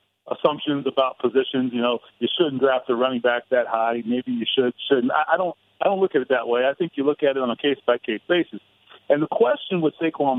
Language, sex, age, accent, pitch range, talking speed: English, male, 40-59, American, 120-160 Hz, 230 wpm